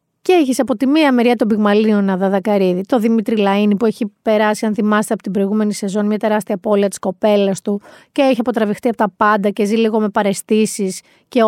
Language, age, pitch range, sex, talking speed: Greek, 30-49, 210-285 Hz, female, 210 wpm